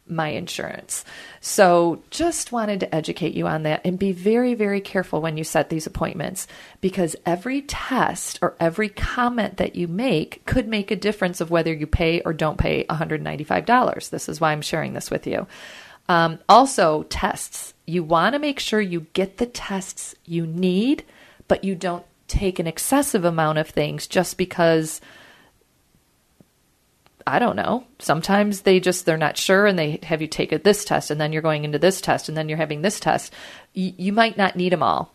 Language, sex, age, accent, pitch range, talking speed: English, female, 40-59, American, 165-210 Hz, 185 wpm